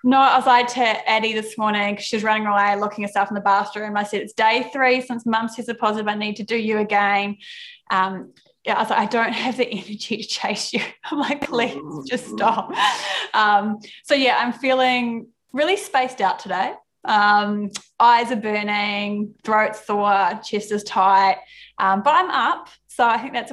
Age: 10-29